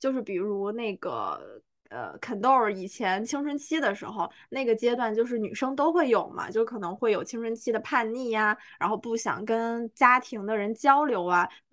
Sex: female